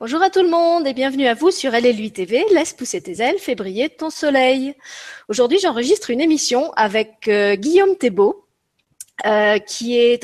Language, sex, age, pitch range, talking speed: French, female, 30-49, 205-275 Hz, 180 wpm